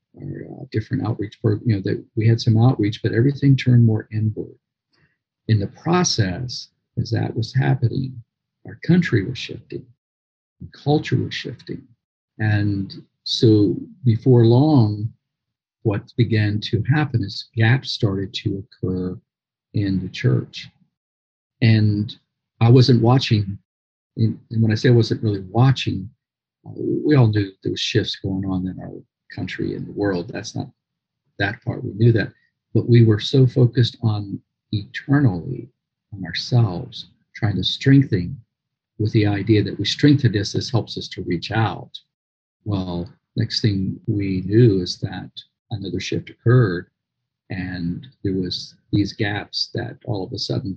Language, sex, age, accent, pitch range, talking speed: English, male, 50-69, American, 100-125 Hz, 150 wpm